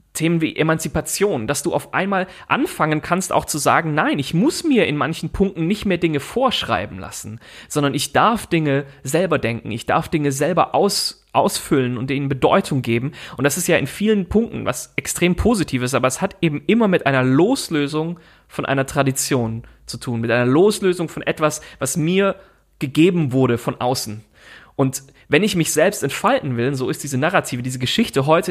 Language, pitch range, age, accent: German, 135-175 Hz, 30-49, German